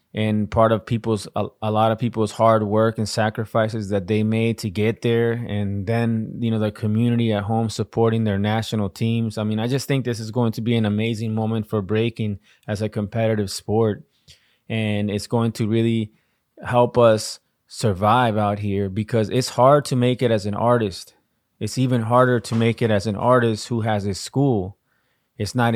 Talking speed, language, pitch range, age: 195 wpm, English, 110-120 Hz, 20-39